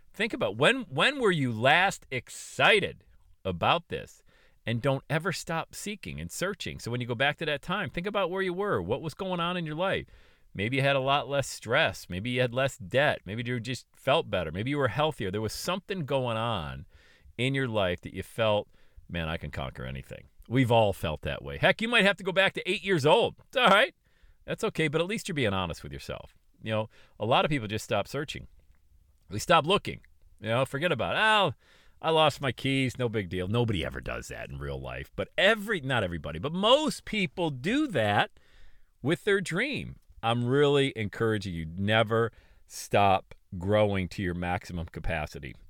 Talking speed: 205 wpm